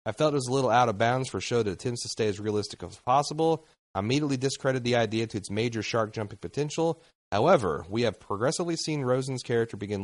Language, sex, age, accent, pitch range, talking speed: English, male, 30-49, American, 105-135 Hz, 235 wpm